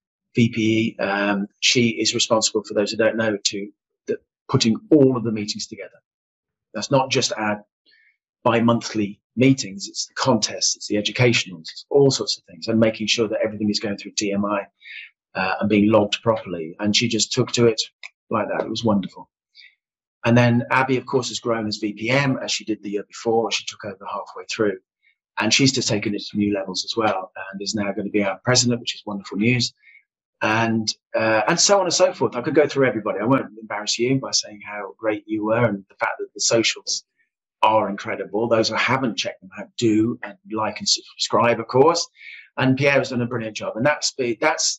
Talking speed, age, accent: 210 wpm, 30-49, British